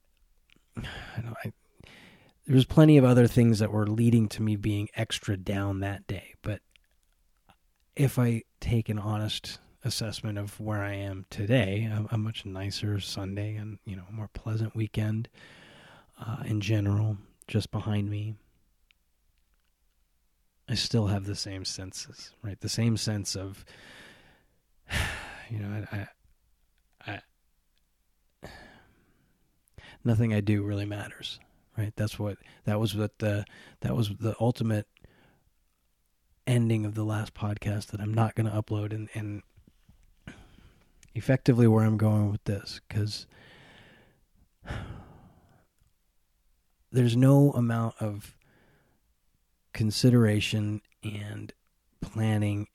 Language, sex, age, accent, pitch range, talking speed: English, male, 30-49, American, 100-110 Hz, 120 wpm